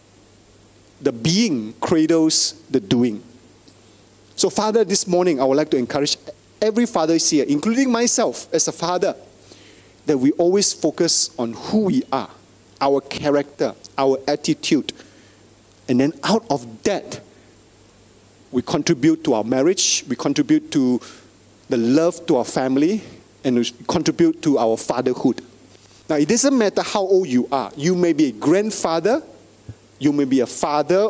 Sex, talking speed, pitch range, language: male, 145 wpm, 110-170 Hz, English